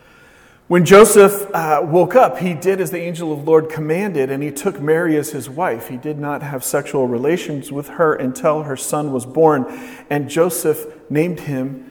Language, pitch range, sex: English, 150-195 Hz, male